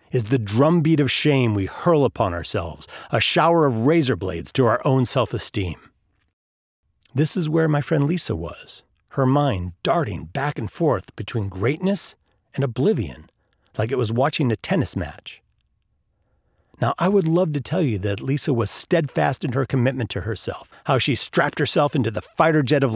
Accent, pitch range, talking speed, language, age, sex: American, 100-145 Hz, 175 wpm, English, 40-59, male